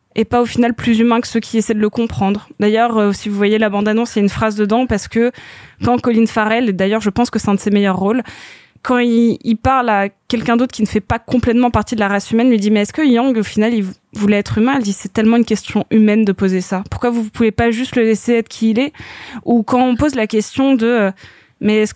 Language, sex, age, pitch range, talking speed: French, female, 20-39, 215-250 Hz, 280 wpm